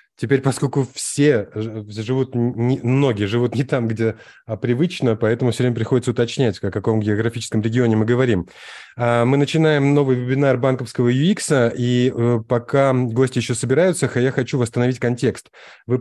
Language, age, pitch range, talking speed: Russian, 20-39, 110-135 Hz, 140 wpm